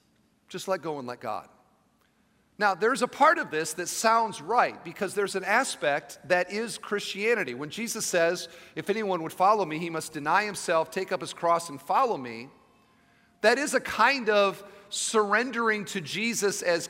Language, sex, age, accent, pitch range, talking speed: English, male, 40-59, American, 165-220 Hz, 180 wpm